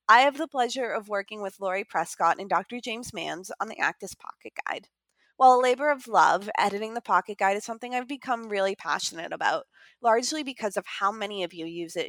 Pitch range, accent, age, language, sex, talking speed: 180-255 Hz, American, 20-39, English, female, 215 wpm